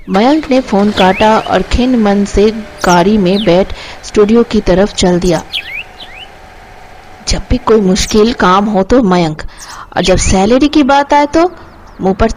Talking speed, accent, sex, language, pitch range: 160 wpm, native, female, Hindi, 175-225 Hz